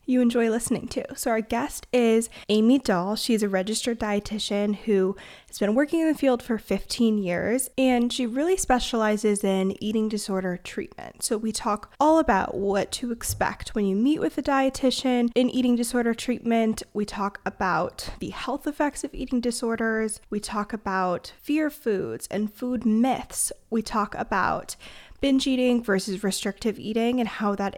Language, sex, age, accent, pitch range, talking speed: English, female, 20-39, American, 205-255 Hz, 170 wpm